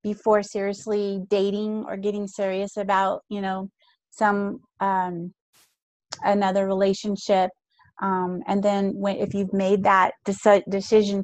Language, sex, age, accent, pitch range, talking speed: English, female, 30-49, American, 195-215 Hz, 115 wpm